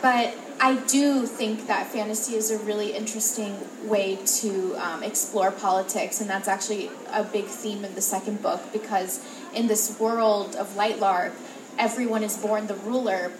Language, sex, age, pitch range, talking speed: French, female, 10-29, 200-230 Hz, 160 wpm